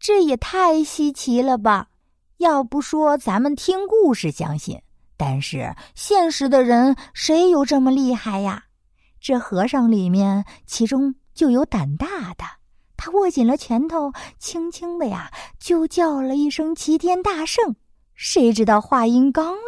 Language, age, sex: Chinese, 50-69, female